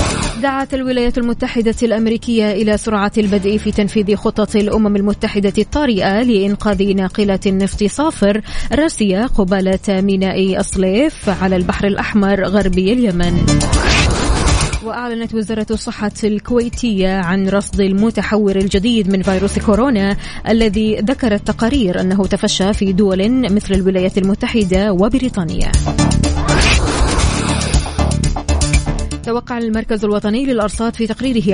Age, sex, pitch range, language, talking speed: 20-39, female, 185-225 Hz, Arabic, 105 wpm